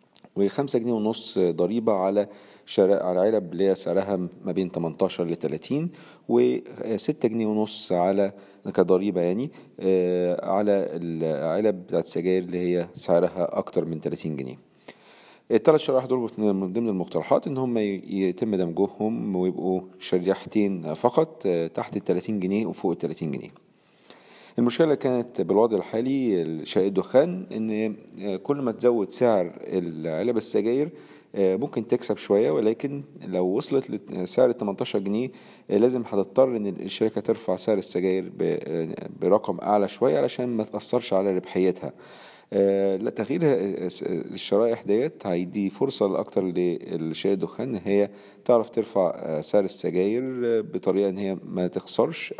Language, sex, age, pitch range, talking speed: Arabic, male, 40-59, 95-115 Hz, 120 wpm